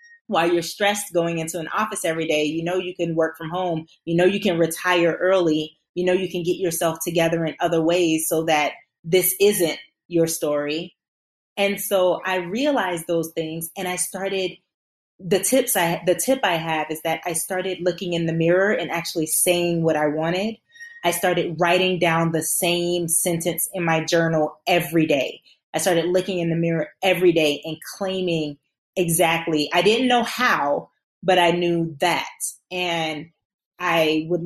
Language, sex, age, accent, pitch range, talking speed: English, female, 30-49, American, 165-190 Hz, 175 wpm